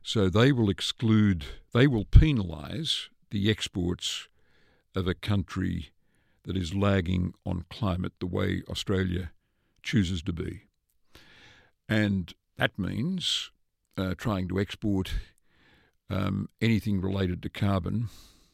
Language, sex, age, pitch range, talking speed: English, male, 60-79, 90-105 Hz, 115 wpm